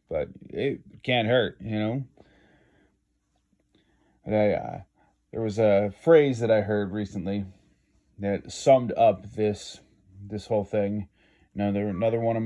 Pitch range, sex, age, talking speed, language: 100-115 Hz, male, 30-49, 140 wpm, English